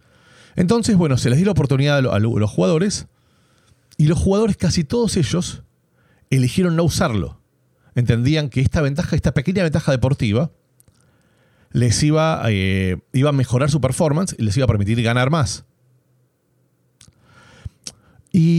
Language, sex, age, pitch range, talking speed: Spanish, male, 30-49, 115-150 Hz, 140 wpm